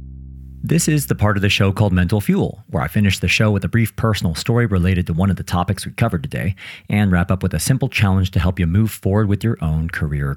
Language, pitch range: English, 85-105 Hz